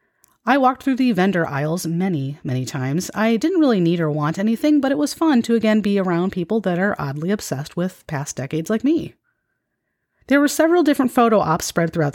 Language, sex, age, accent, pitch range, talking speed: English, female, 30-49, American, 150-200 Hz, 210 wpm